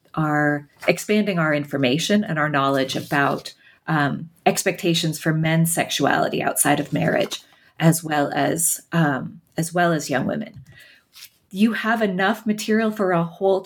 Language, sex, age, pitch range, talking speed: English, female, 30-49, 155-195 Hz, 140 wpm